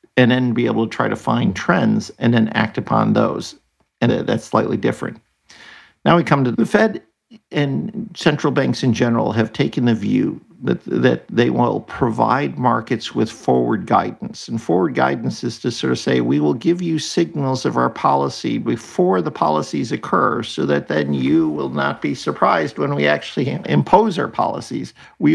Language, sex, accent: English, male, American